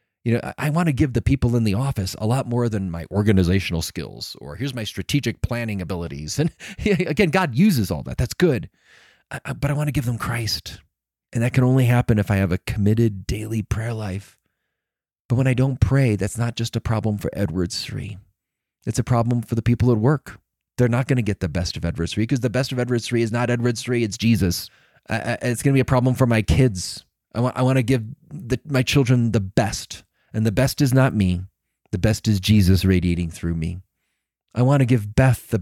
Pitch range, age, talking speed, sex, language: 95-120 Hz, 30-49, 220 wpm, male, English